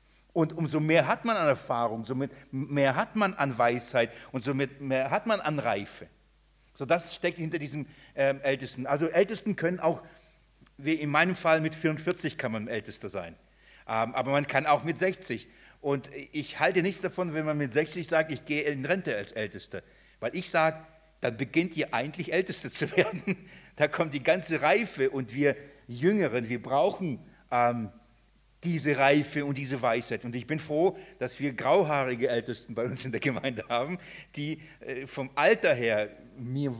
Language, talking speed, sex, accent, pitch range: German, 180 wpm, male, German, 130-170 Hz